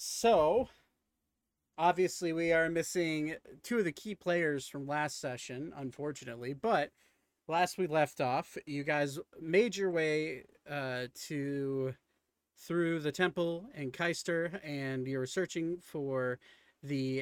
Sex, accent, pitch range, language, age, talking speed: male, American, 135-180 Hz, English, 30-49, 130 wpm